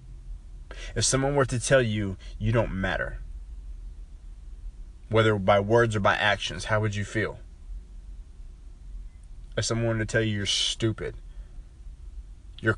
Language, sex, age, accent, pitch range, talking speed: English, male, 20-39, American, 70-110 Hz, 130 wpm